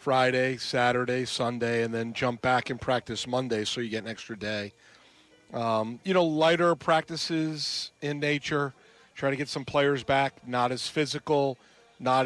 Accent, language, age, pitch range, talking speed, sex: American, English, 40-59, 125-155 Hz, 160 wpm, male